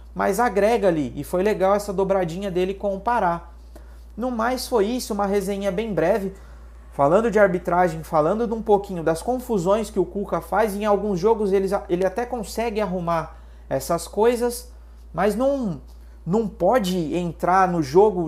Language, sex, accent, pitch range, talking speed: Portuguese, male, Brazilian, 160-205 Hz, 165 wpm